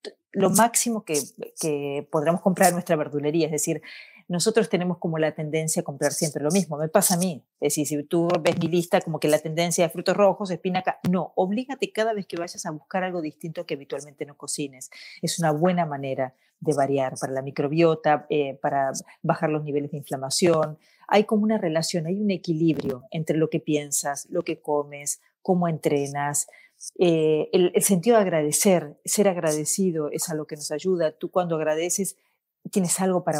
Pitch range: 155-190 Hz